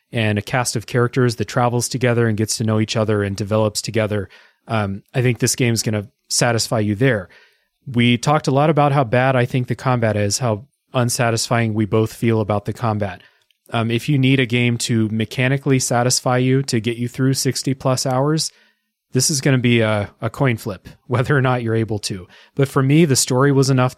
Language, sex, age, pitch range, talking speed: English, male, 30-49, 110-130 Hz, 215 wpm